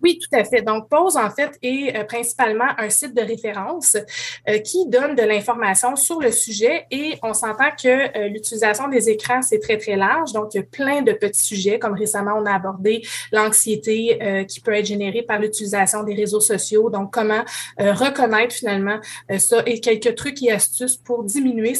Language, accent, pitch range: French, Canadian, 215-250 Hz